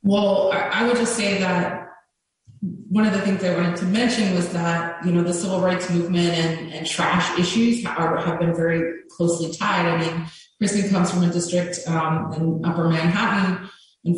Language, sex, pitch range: English, female, 170-195 Hz